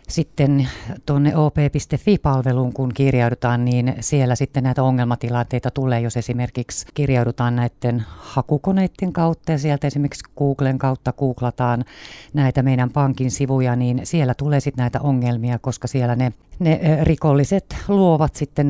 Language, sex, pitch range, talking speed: Finnish, female, 120-150 Hz, 130 wpm